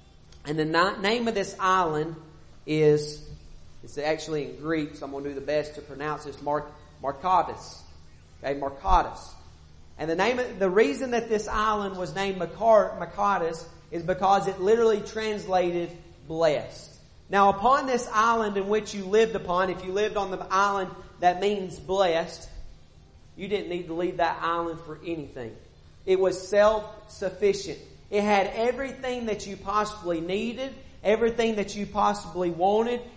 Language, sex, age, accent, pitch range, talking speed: English, male, 40-59, American, 165-205 Hz, 155 wpm